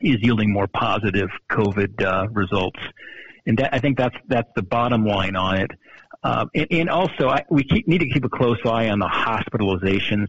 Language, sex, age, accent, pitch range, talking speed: English, male, 50-69, American, 100-120 Hz, 200 wpm